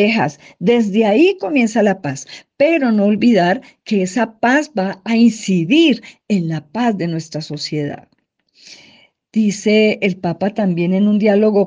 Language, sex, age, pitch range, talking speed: Spanish, female, 50-69, 170-235 Hz, 140 wpm